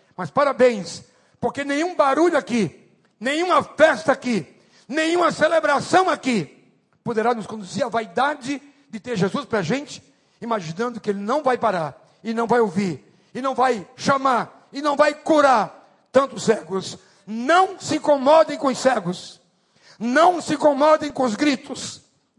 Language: Portuguese